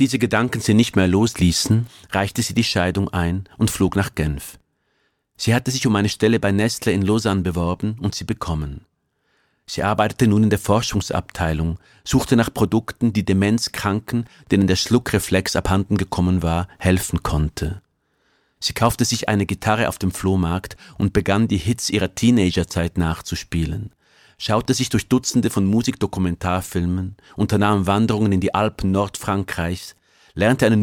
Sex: male